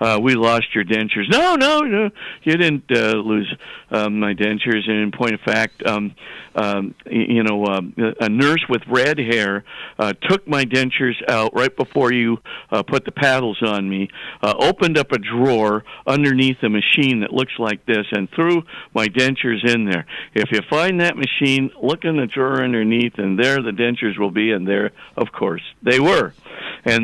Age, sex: 50-69, male